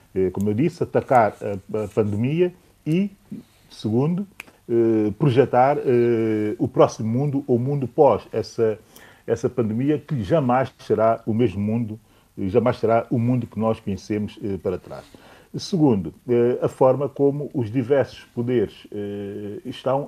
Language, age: Portuguese, 40-59